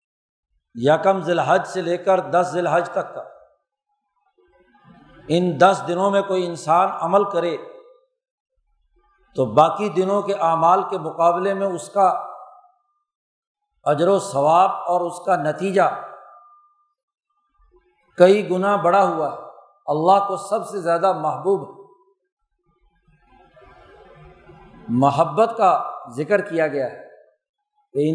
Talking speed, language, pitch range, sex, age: 110 wpm, Urdu, 170-265 Hz, male, 50-69